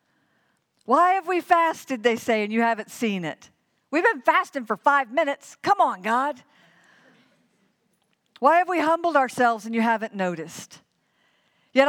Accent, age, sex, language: American, 50-69, female, English